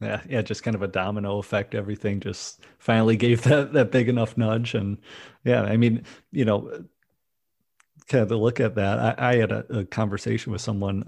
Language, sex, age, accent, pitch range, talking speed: English, male, 30-49, American, 100-115 Hz, 195 wpm